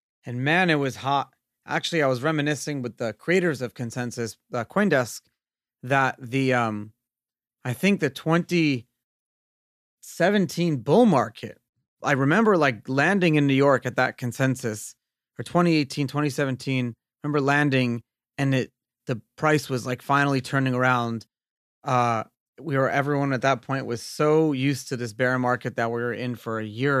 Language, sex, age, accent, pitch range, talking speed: English, male, 30-49, American, 120-150 Hz, 160 wpm